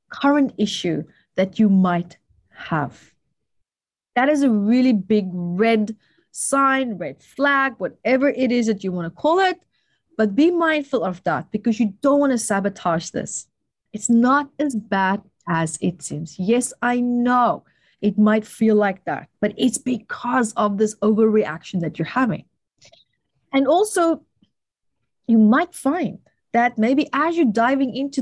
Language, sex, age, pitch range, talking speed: English, female, 30-49, 195-270 Hz, 150 wpm